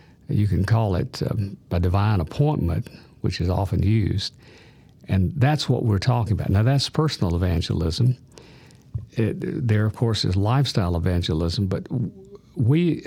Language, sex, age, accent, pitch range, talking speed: English, male, 50-69, American, 100-125 Hz, 140 wpm